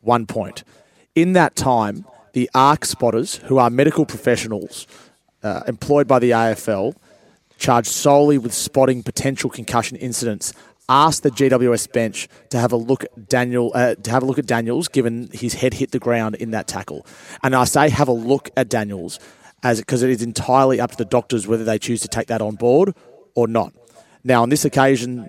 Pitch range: 115-135 Hz